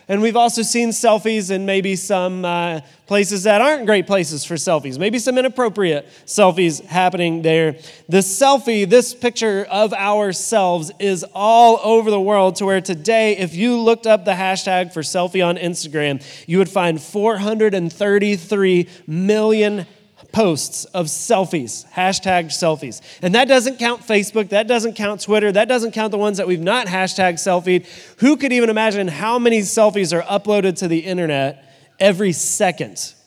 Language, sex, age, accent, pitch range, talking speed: English, male, 30-49, American, 180-220 Hz, 160 wpm